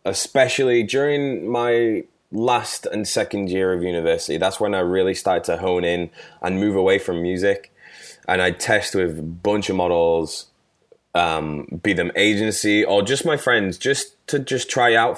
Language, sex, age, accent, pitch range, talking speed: English, male, 20-39, British, 90-125 Hz, 170 wpm